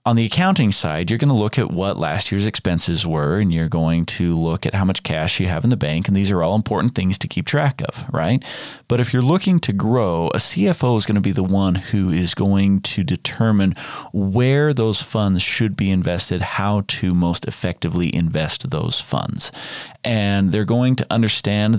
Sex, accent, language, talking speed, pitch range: male, American, English, 210 wpm, 95-135 Hz